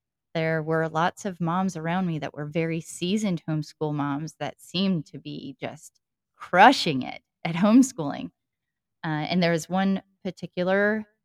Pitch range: 155-190 Hz